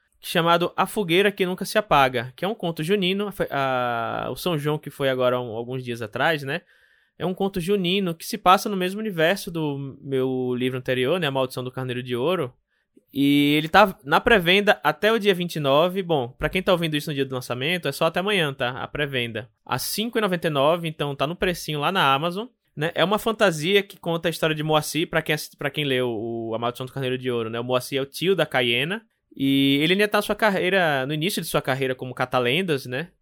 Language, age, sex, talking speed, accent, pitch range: Portuguese, 20-39, male, 220 wpm, Brazilian, 135-185 Hz